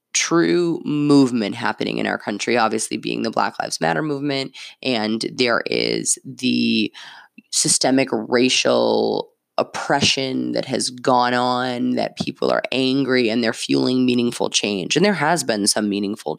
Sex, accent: female, American